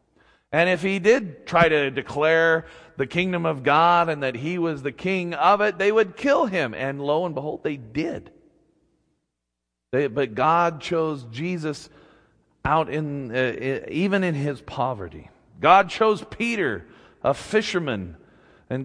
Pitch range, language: 125-185 Hz, English